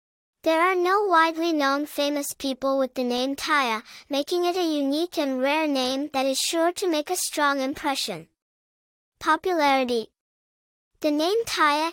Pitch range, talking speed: 270-330 Hz, 150 wpm